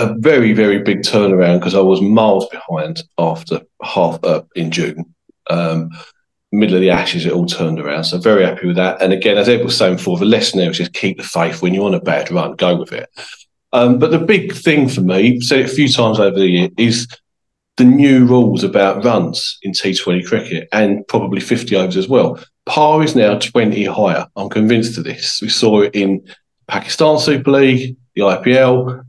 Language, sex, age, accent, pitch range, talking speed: English, male, 40-59, British, 95-130 Hz, 210 wpm